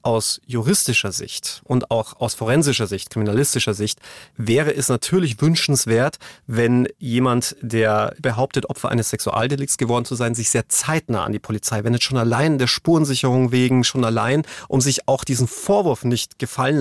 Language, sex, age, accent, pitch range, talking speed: German, male, 40-59, German, 120-150 Hz, 160 wpm